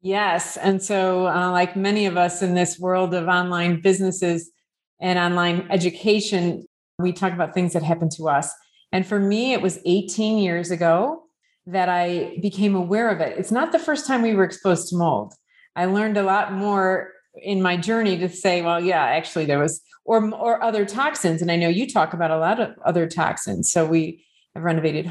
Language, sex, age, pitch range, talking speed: English, female, 40-59, 170-215 Hz, 200 wpm